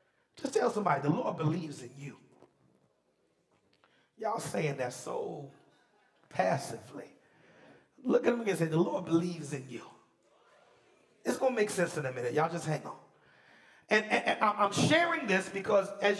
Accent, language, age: American, English, 40-59